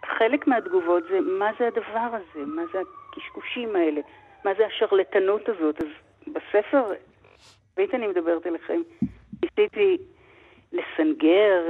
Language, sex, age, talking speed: Hebrew, female, 50-69, 120 wpm